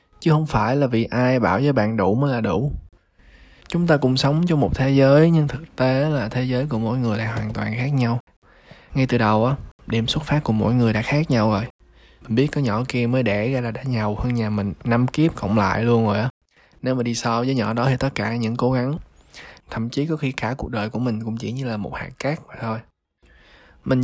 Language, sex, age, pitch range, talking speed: Vietnamese, male, 20-39, 105-130 Hz, 255 wpm